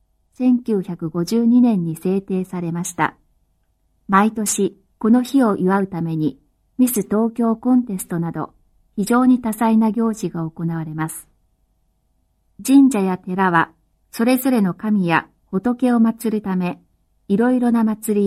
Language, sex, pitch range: Chinese, female, 165-230 Hz